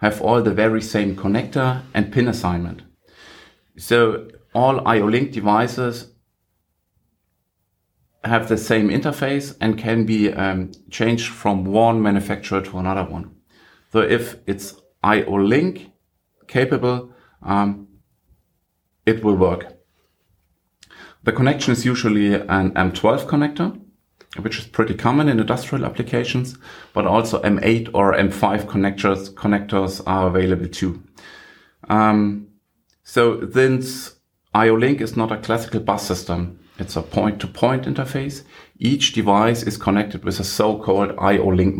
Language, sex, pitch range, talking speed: English, male, 95-120 Hz, 120 wpm